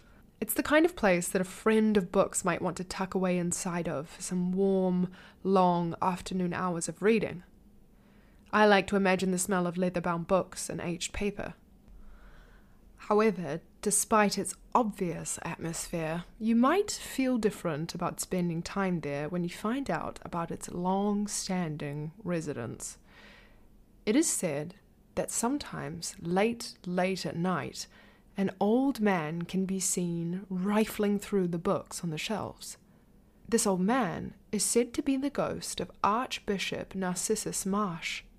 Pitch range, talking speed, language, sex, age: 175-215 Hz, 145 wpm, English, female, 20-39